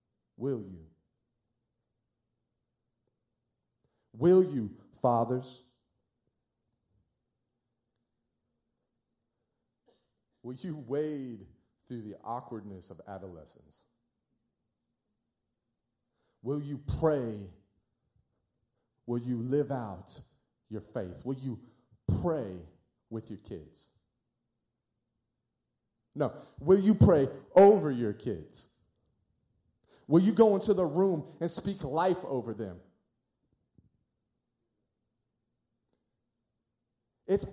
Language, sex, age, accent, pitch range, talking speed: English, male, 40-59, American, 115-190 Hz, 75 wpm